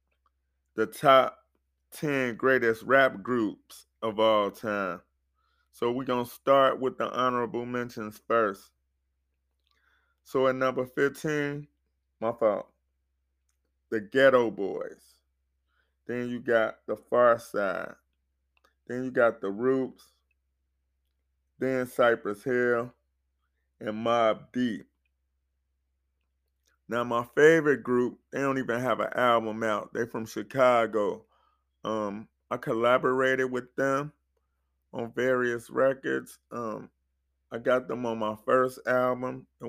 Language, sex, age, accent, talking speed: English, male, 20-39, American, 115 wpm